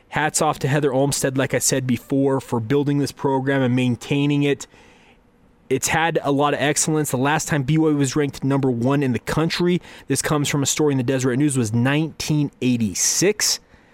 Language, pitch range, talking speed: English, 125-150 Hz, 190 wpm